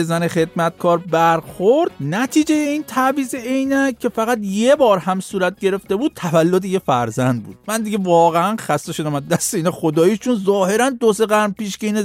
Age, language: 50-69, Persian